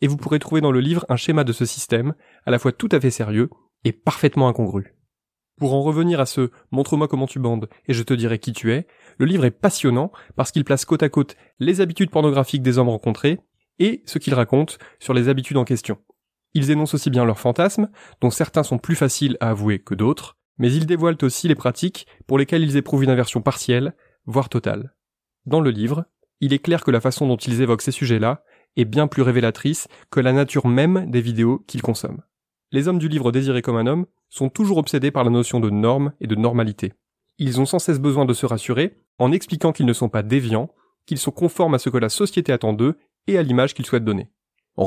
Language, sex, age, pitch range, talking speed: French, male, 20-39, 120-150 Hz, 225 wpm